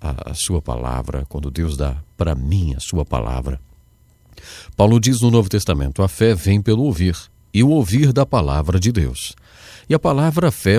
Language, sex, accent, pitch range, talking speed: English, male, Brazilian, 80-115 Hz, 180 wpm